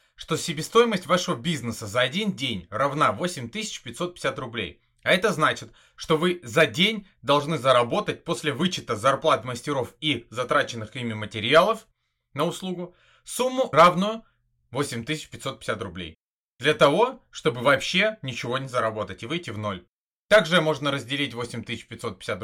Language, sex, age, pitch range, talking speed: Russian, male, 30-49, 120-175 Hz, 130 wpm